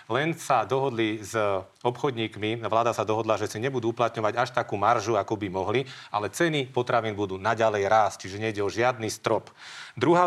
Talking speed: 175 wpm